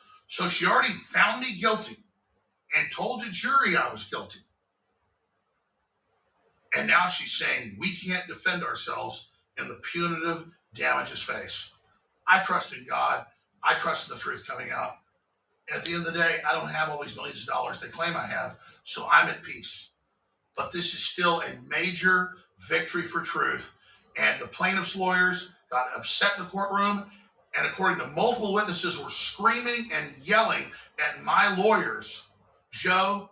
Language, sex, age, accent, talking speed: English, male, 50-69, American, 160 wpm